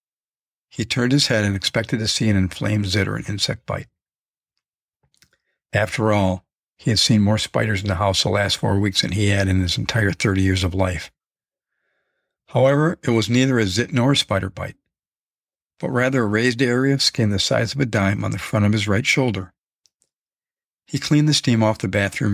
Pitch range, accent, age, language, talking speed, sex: 100-125 Hz, American, 50-69, English, 200 wpm, male